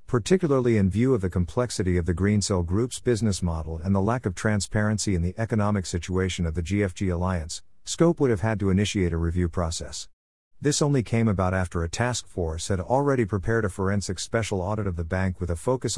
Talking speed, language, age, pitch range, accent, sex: 205 wpm, English, 50-69, 90-115 Hz, American, male